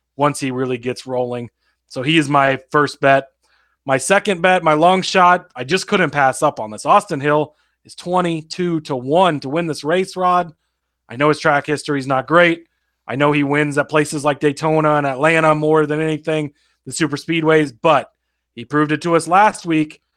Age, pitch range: 30-49, 145-185 Hz